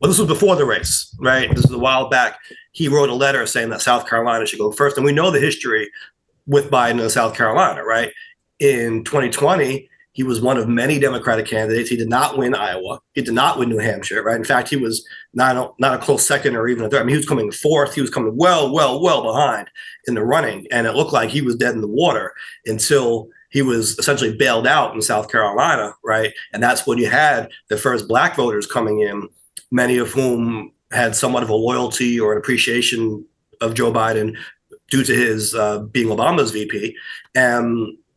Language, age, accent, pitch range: English, 30-49, American, 115-145 Hz